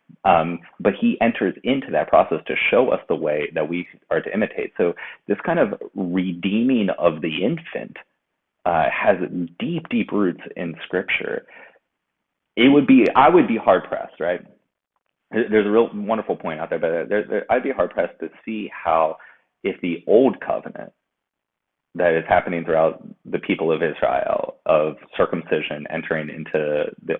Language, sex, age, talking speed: English, male, 30-49, 160 wpm